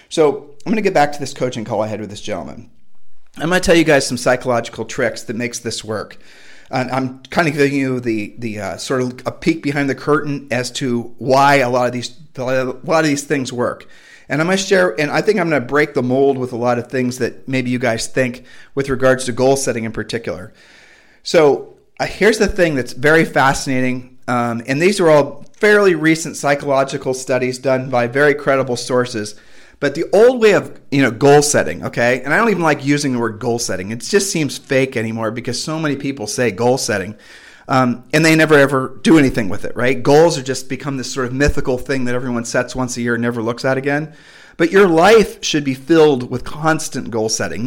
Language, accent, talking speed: English, American, 230 wpm